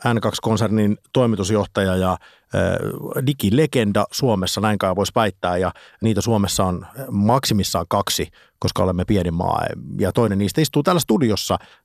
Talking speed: 120 wpm